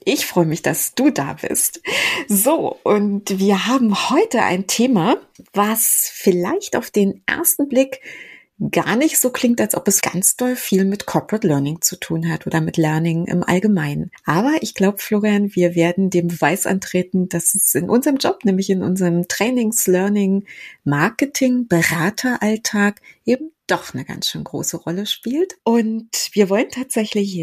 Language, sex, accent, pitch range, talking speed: German, female, German, 175-235 Hz, 160 wpm